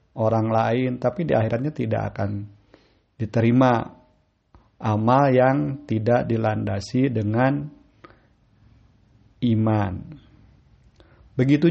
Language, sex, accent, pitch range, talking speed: Indonesian, male, native, 110-135 Hz, 75 wpm